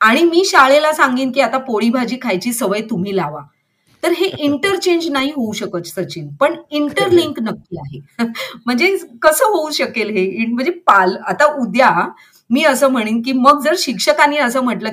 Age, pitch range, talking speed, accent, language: 30-49, 195-285 Hz, 160 wpm, native, Marathi